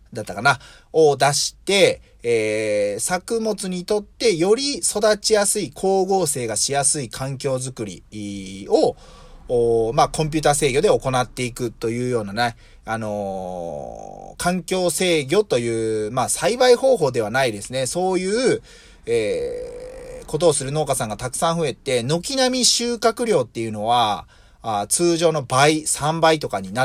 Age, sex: 30-49, male